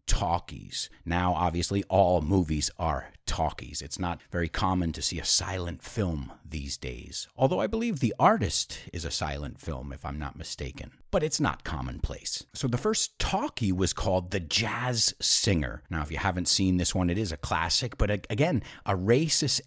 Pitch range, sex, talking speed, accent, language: 80-110 Hz, male, 180 wpm, American, English